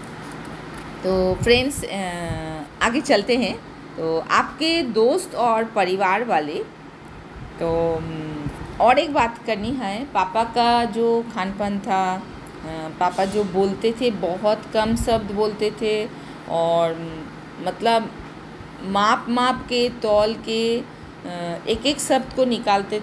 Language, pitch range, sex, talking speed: Hindi, 185-245 Hz, female, 110 wpm